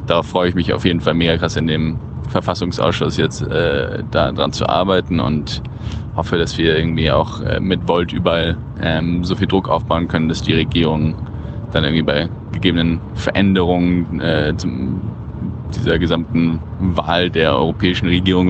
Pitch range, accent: 80-95 Hz, German